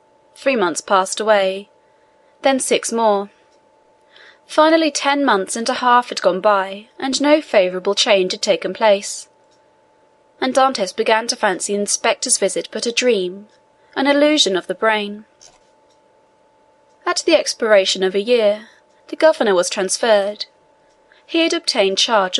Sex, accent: female, British